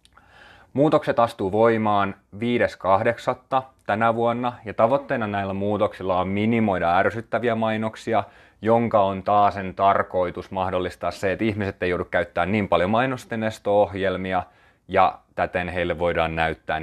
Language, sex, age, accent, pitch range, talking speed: Finnish, male, 30-49, native, 90-110 Hz, 120 wpm